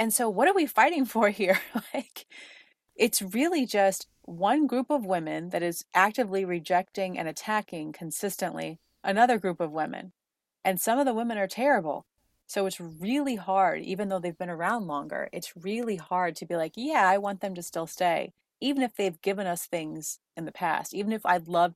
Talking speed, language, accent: 195 wpm, English, American